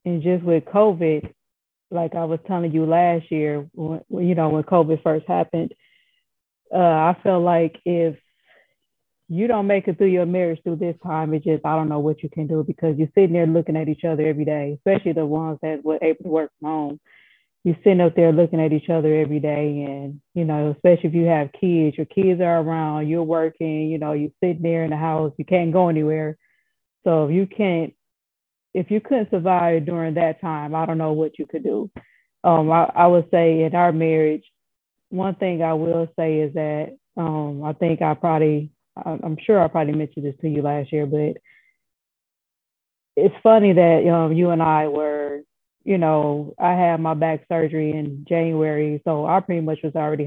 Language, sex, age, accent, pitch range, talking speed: English, female, 20-39, American, 155-175 Hz, 200 wpm